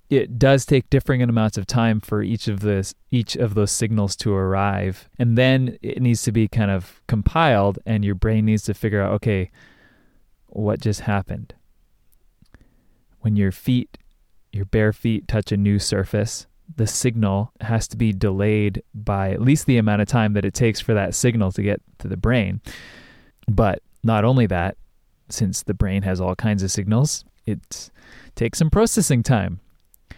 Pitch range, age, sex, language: 100-125 Hz, 20-39, male, English